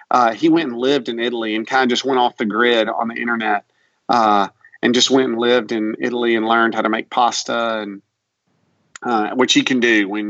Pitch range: 115-145 Hz